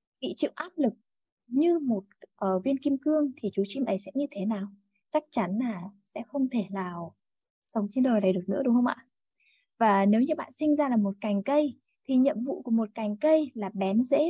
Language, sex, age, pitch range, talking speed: Vietnamese, female, 20-39, 200-265 Hz, 225 wpm